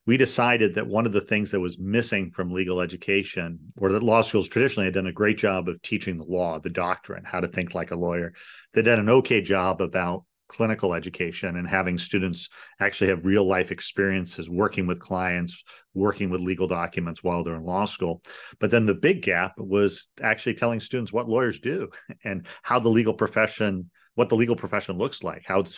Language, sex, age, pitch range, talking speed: English, male, 40-59, 90-100 Hz, 205 wpm